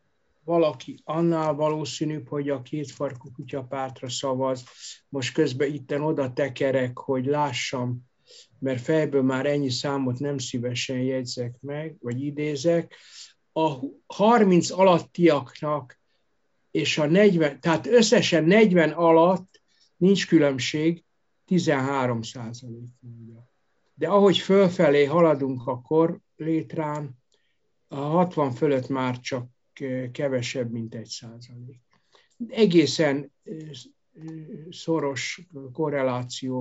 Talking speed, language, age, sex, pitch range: 95 wpm, Hungarian, 60-79, male, 125-155 Hz